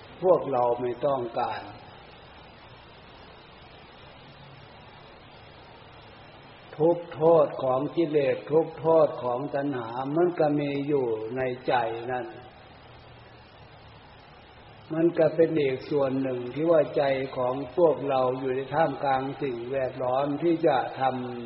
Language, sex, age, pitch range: Thai, male, 60-79, 125-150 Hz